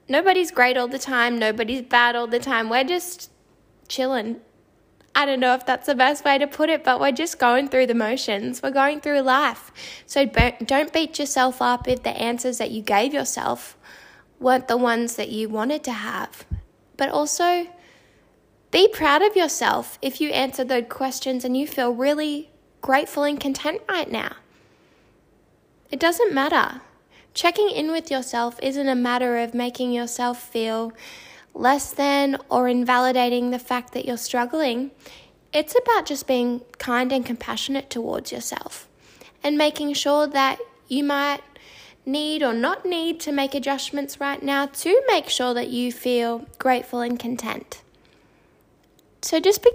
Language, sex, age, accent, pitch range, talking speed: English, female, 10-29, Australian, 245-295 Hz, 160 wpm